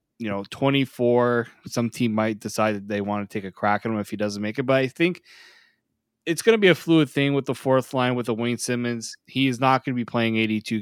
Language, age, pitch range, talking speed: English, 20-39, 110-140 Hz, 260 wpm